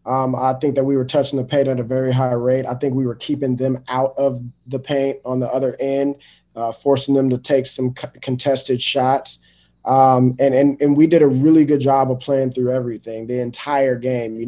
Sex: male